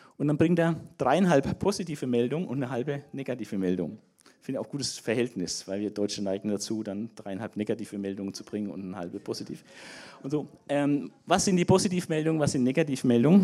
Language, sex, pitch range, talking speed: German, male, 120-165 Hz, 185 wpm